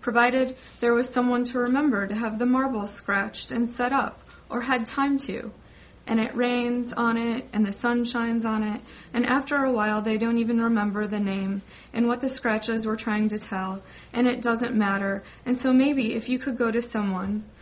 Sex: female